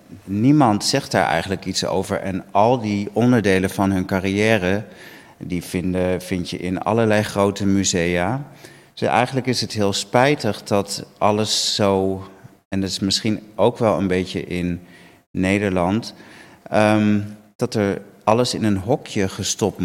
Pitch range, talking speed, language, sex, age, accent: 95-105 Hz, 135 wpm, Dutch, male, 40-59, Dutch